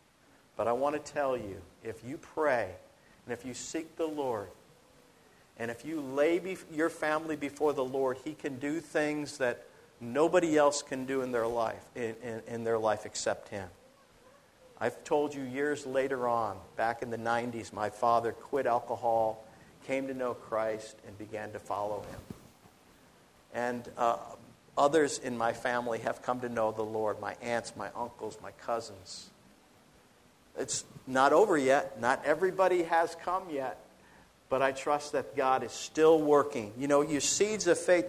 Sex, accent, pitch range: male, American, 115-155 Hz